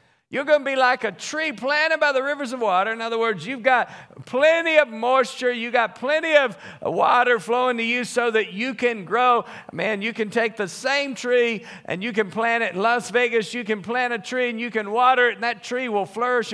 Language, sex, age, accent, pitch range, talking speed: English, male, 50-69, American, 210-255 Hz, 230 wpm